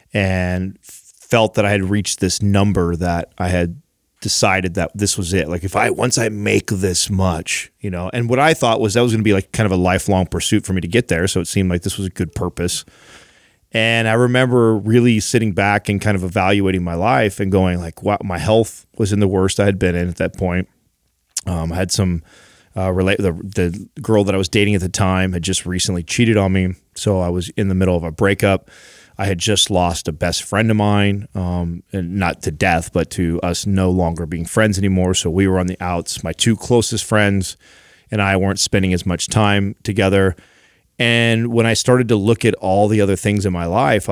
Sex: male